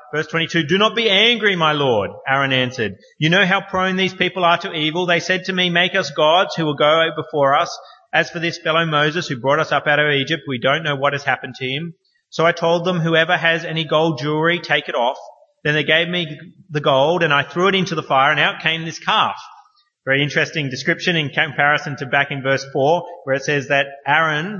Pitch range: 140-175 Hz